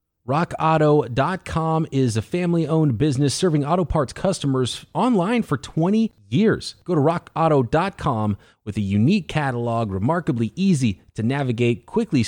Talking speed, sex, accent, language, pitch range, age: 120 wpm, male, American, English, 115-160 Hz, 30-49